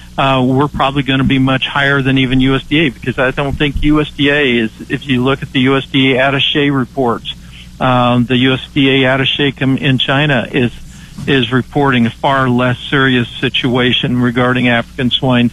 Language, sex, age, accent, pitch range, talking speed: English, male, 60-79, American, 125-135 Hz, 160 wpm